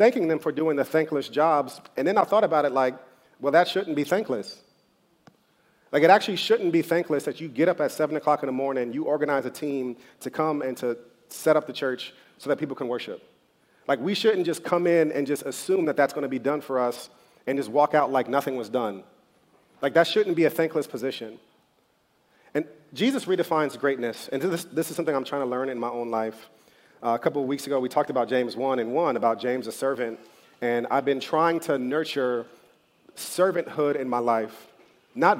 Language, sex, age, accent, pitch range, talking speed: English, male, 40-59, American, 130-160 Hz, 220 wpm